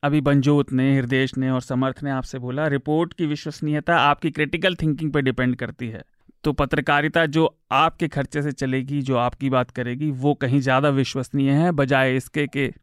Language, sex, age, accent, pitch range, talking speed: Hindi, male, 30-49, native, 130-165 Hz, 180 wpm